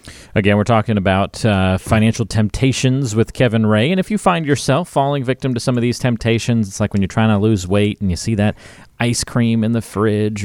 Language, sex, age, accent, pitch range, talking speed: English, male, 40-59, American, 95-115 Hz, 225 wpm